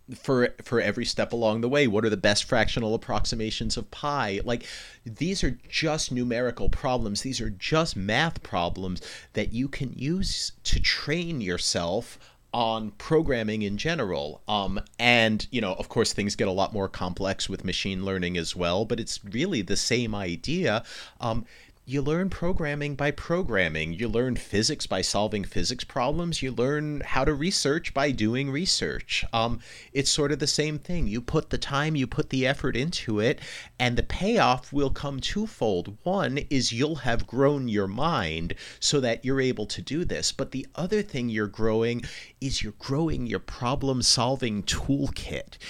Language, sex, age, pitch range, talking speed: English, male, 40-59, 110-145 Hz, 170 wpm